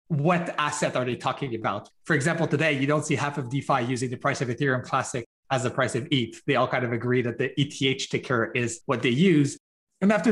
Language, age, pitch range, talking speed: English, 30-49, 130-165 Hz, 240 wpm